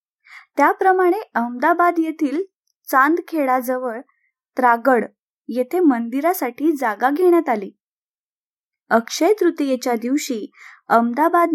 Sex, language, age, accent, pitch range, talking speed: female, Marathi, 20-39, native, 240-315 Hz, 75 wpm